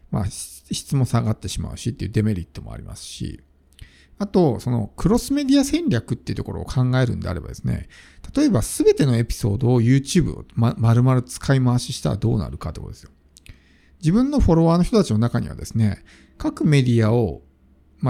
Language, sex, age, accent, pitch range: Japanese, male, 50-69, native, 95-155 Hz